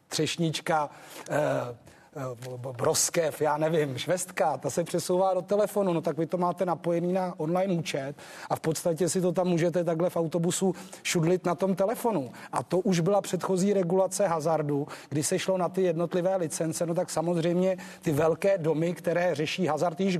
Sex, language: male, Czech